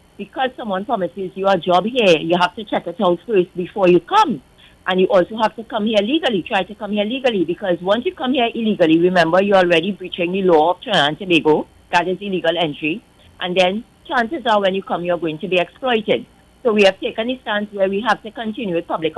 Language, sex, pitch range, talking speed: English, female, 175-220 Hz, 230 wpm